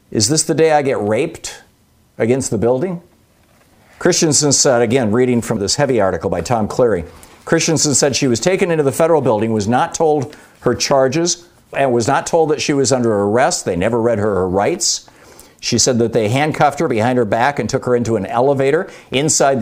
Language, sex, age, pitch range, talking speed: English, male, 50-69, 110-140 Hz, 200 wpm